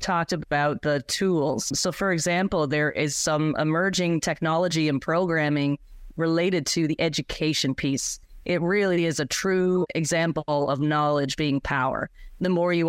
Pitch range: 150-180 Hz